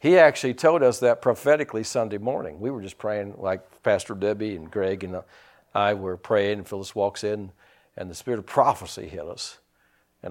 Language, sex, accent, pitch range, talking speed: English, male, American, 100-165 Hz, 190 wpm